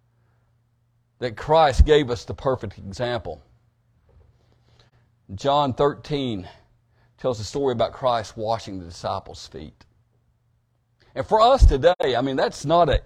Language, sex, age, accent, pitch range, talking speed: English, male, 50-69, American, 115-135 Hz, 125 wpm